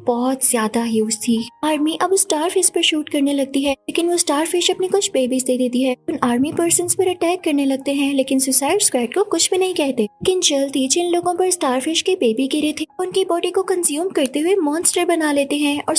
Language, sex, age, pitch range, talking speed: Hindi, female, 20-39, 255-350 Hz, 220 wpm